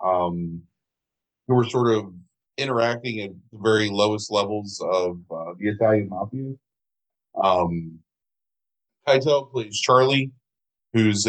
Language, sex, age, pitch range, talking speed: English, male, 30-49, 95-115 Hz, 110 wpm